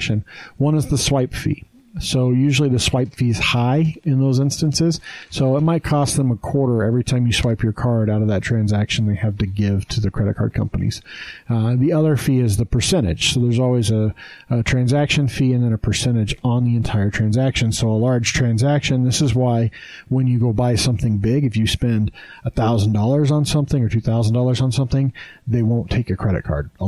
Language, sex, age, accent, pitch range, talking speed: English, male, 40-59, American, 110-135 Hz, 210 wpm